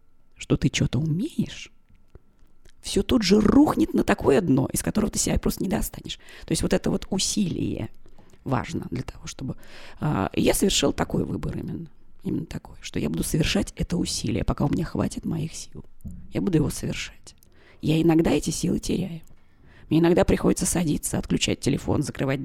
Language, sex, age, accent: Russian, female, 20-39, native